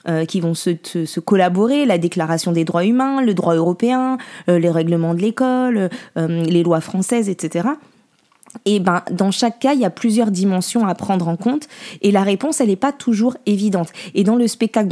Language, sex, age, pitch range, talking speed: French, female, 20-39, 180-230 Hz, 195 wpm